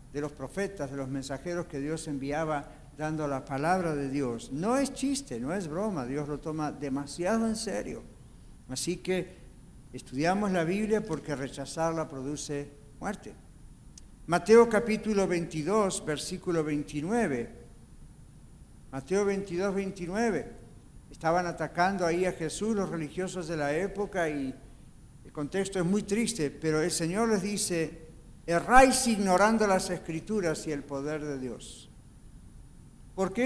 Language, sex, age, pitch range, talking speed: Spanish, male, 60-79, 145-200 Hz, 135 wpm